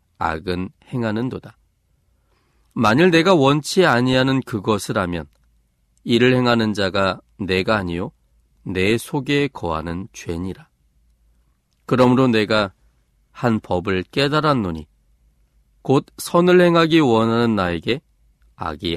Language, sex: Korean, male